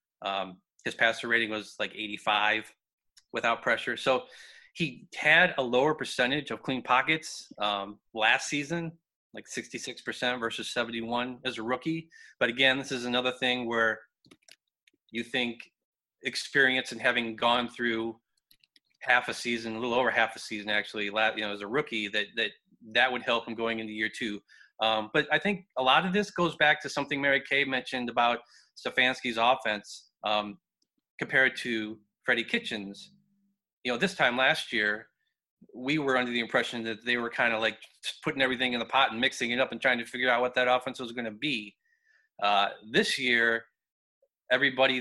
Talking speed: 175 wpm